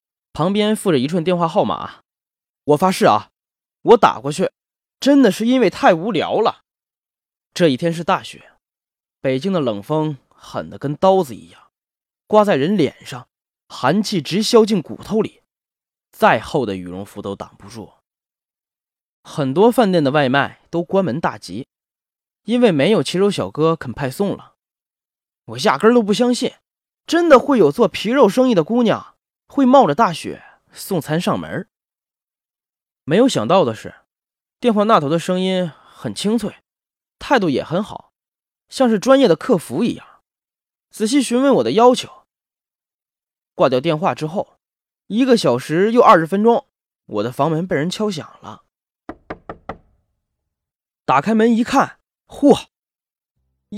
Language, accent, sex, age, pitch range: Chinese, native, male, 20-39, 160-240 Hz